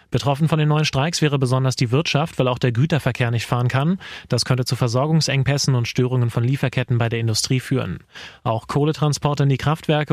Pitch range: 125-150 Hz